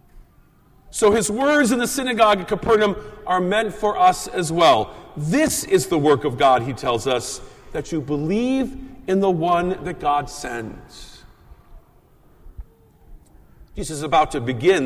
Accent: American